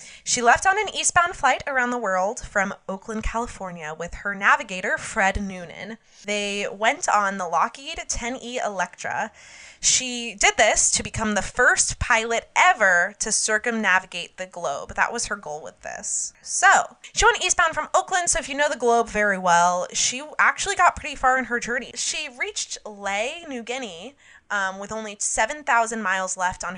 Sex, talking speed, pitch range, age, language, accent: female, 175 wpm, 185-245 Hz, 20-39, English, American